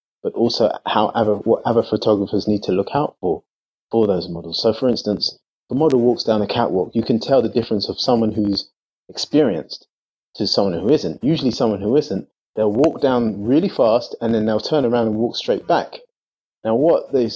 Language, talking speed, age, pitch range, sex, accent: English, 200 wpm, 30-49, 105-135 Hz, male, British